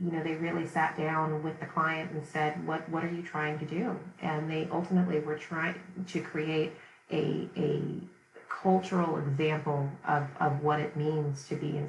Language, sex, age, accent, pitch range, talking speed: English, female, 30-49, American, 150-160 Hz, 185 wpm